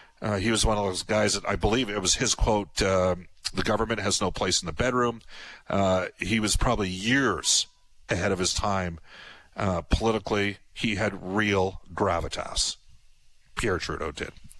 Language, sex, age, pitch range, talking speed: English, male, 50-69, 95-130 Hz, 170 wpm